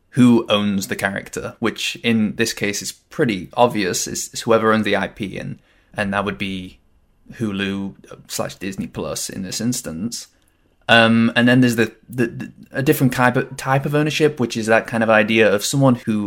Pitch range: 100-115 Hz